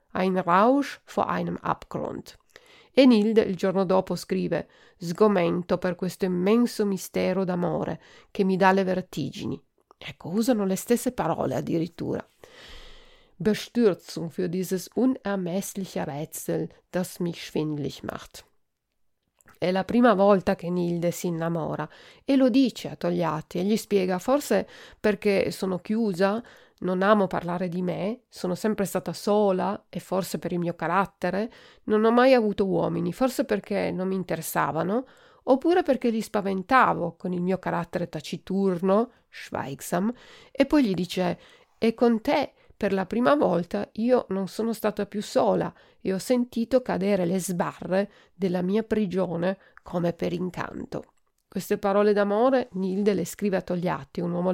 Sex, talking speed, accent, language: female, 145 wpm, native, Italian